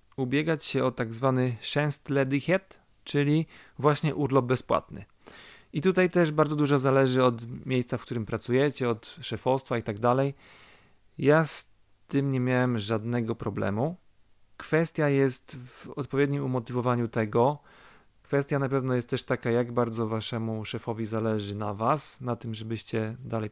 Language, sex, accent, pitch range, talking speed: Polish, male, native, 110-140 Hz, 145 wpm